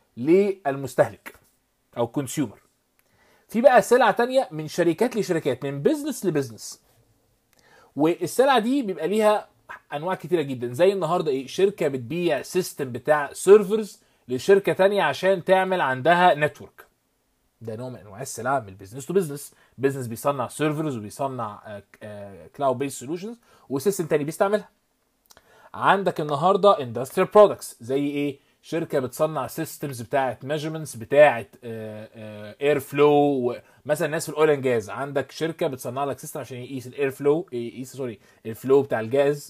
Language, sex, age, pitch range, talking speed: Arabic, male, 20-39, 125-185 Hz, 130 wpm